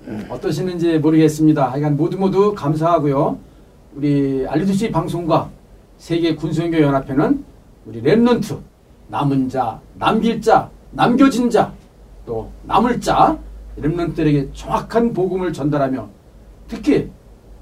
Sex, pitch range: male, 145-215 Hz